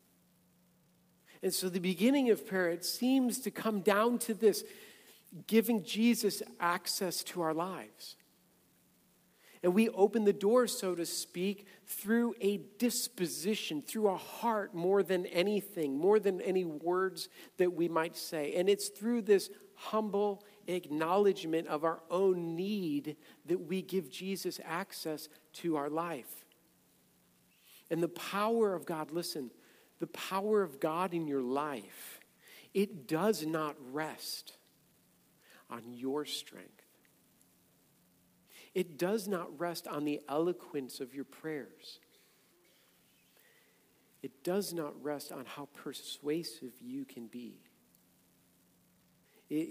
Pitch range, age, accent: 145-200 Hz, 50-69, American